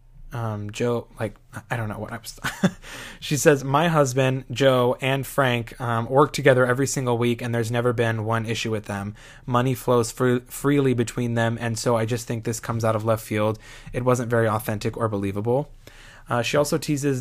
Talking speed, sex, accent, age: 200 wpm, male, American, 20-39